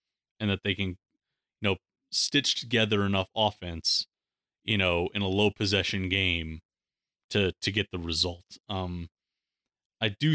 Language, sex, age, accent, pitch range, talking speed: English, male, 30-49, American, 95-115 Hz, 145 wpm